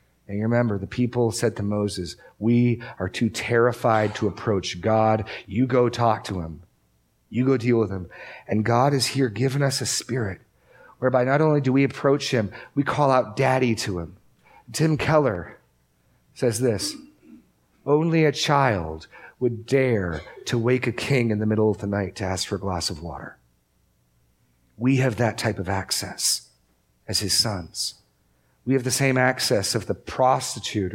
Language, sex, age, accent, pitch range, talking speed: English, male, 40-59, American, 105-140 Hz, 175 wpm